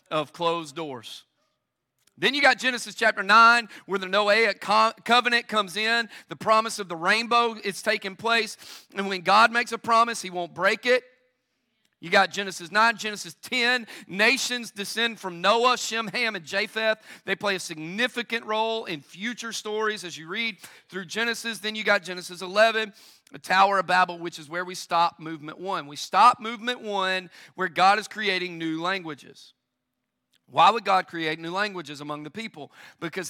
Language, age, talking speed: English, 40-59, 175 wpm